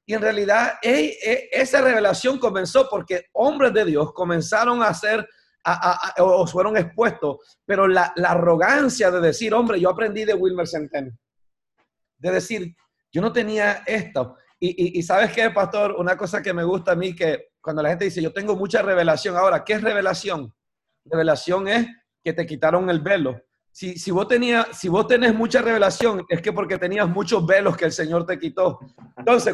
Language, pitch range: Spanish, 175-220 Hz